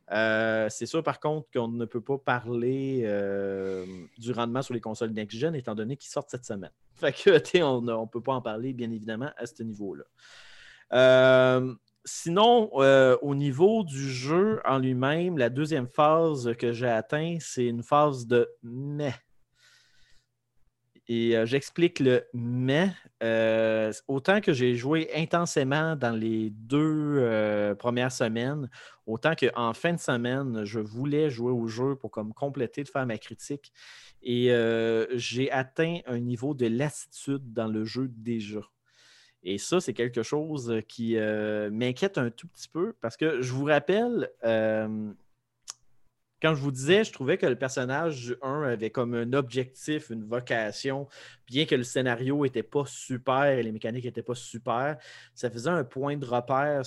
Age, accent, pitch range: 30-49, Canadian, 115-140 Hz